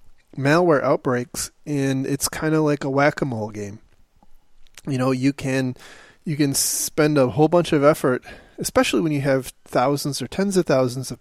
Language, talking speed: English, 170 wpm